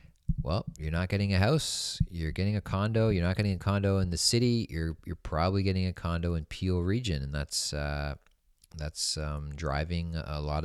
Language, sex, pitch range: English, male, 80-95 Hz